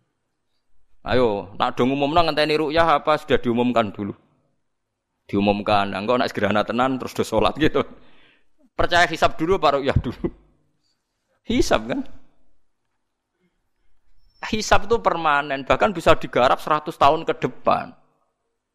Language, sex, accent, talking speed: Indonesian, male, native, 115 wpm